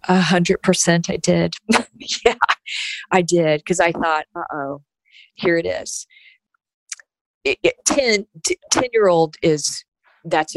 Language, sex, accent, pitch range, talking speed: English, female, American, 150-185 Hz, 125 wpm